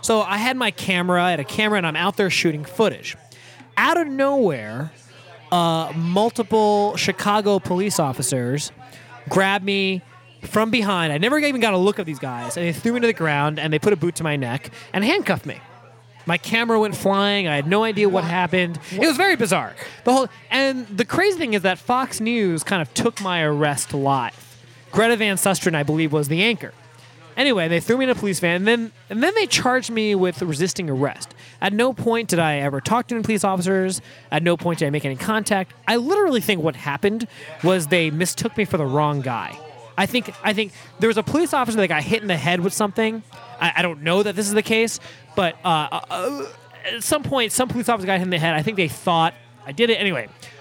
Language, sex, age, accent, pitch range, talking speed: English, male, 20-39, American, 150-220 Hz, 225 wpm